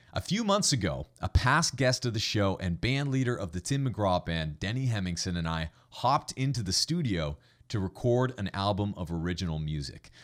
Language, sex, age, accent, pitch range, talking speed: English, male, 40-59, American, 90-125 Hz, 195 wpm